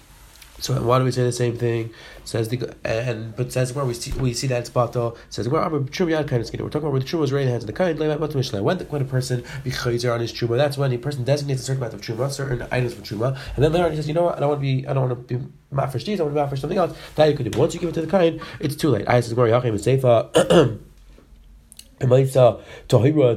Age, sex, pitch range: 30-49, male, 120-155 Hz